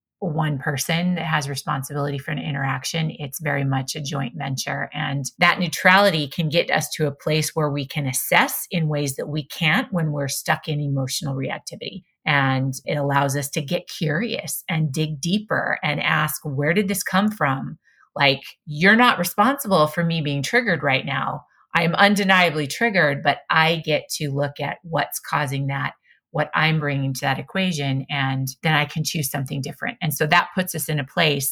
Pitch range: 140-165 Hz